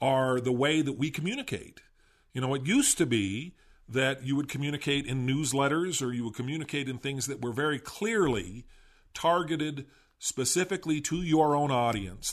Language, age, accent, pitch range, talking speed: English, 50-69, American, 115-150 Hz, 165 wpm